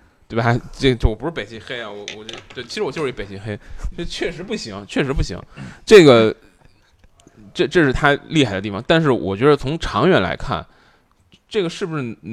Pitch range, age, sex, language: 105-155 Hz, 20-39, male, Chinese